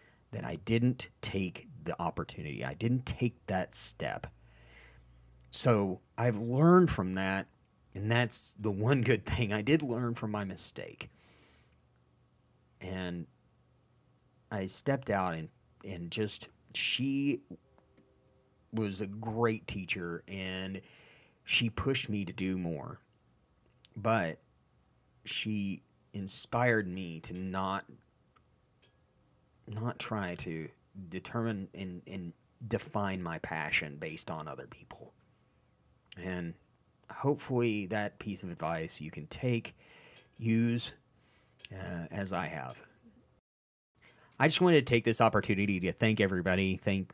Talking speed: 115 wpm